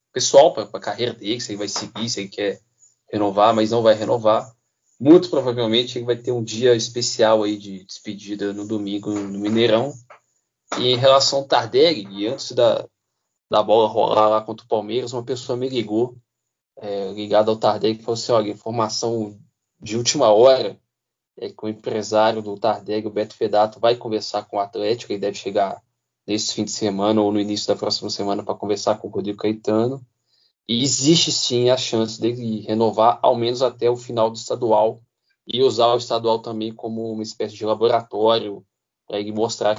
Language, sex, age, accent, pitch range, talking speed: Portuguese, male, 20-39, Brazilian, 105-120 Hz, 185 wpm